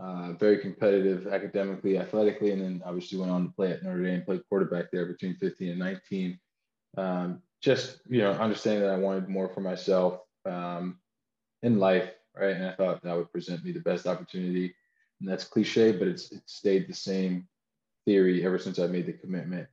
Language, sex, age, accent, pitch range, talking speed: English, male, 20-39, American, 90-100 Hz, 195 wpm